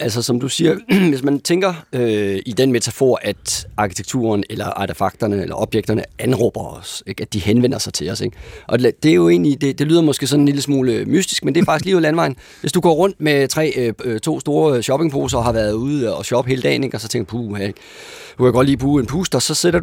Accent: native